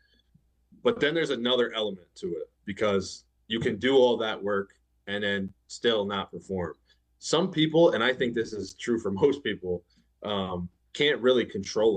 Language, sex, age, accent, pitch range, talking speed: English, male, 20-39, American, 90-115 Hz, 170 wpm